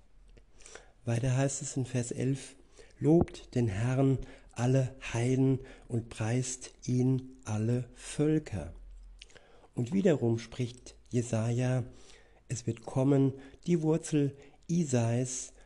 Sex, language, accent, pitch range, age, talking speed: male, German, German, 115-130 Hz, 60-79, 100 wpm